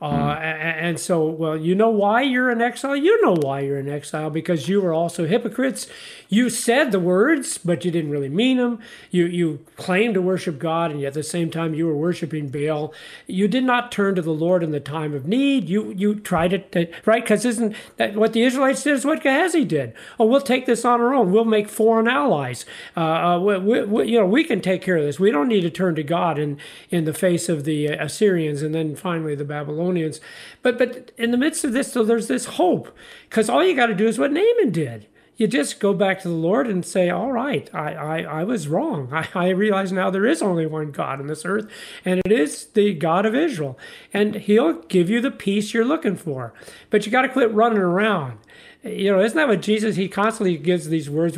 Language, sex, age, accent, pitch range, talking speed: English, male, 50-69, American, 165-230 Hz, 230 wpm